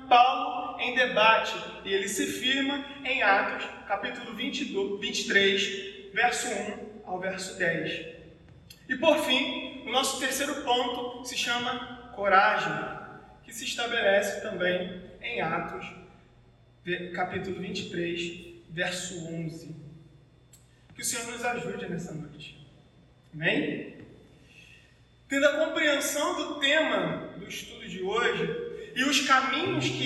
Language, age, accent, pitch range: Portuguese, 20-39, Brazilian, 195-285 Hz